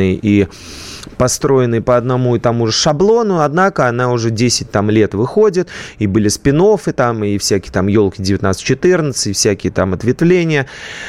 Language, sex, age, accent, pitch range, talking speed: Russian, male, 20-39, native, 100-130 Hz, 150 wpm